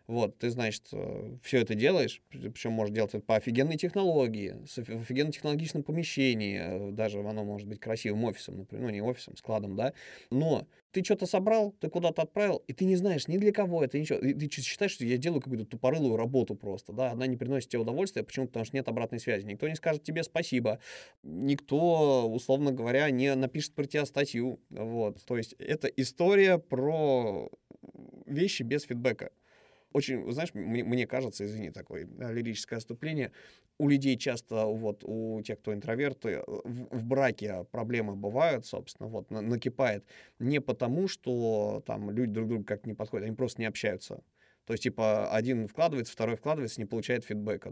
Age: 20-39